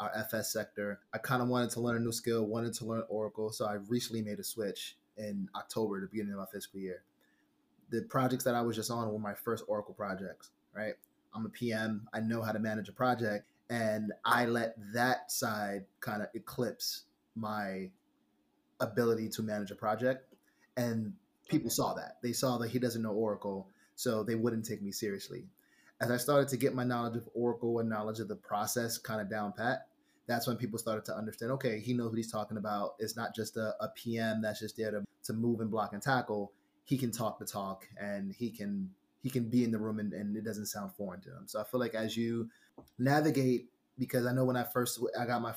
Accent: American